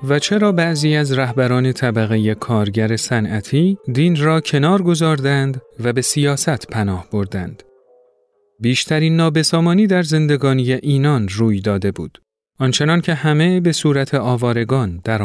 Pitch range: 115-150 Hz